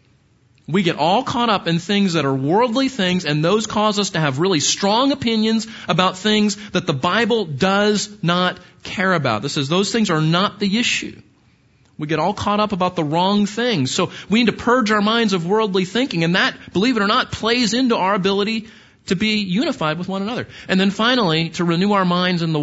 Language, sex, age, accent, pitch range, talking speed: English, male, 40-59, American, 155-215 Hz, 215 wpm